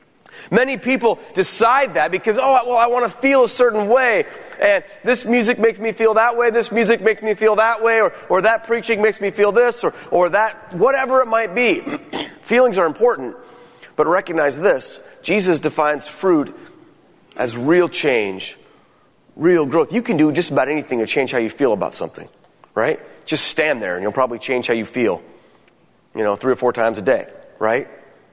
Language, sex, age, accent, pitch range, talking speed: English, male, 30-49, American, 155-235 Hz, 195 wpm